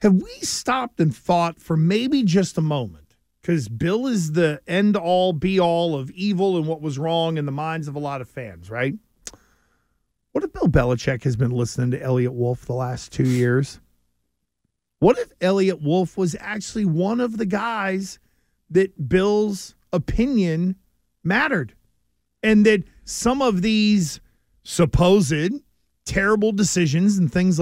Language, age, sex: English, 50-69, male